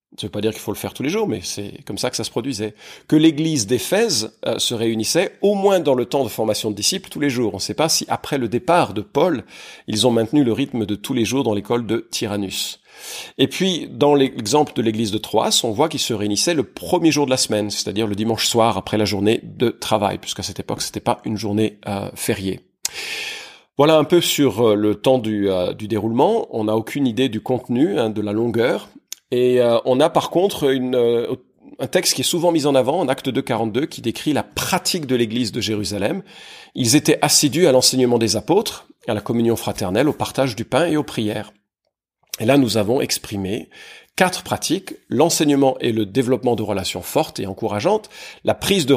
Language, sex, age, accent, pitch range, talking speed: French, male, 40-59, French, 105-140 Hz, 220 wpm